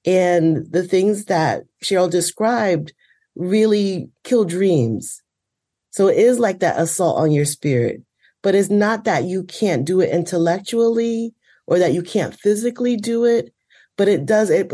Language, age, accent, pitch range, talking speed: English, 30-49, American, 165-205 Hz, 155 wpm